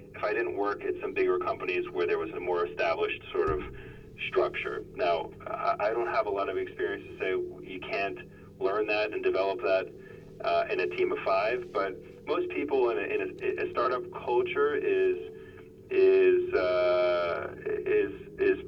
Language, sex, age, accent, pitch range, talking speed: English, male, 30-49, American, 365-410 Hz, 175 wpm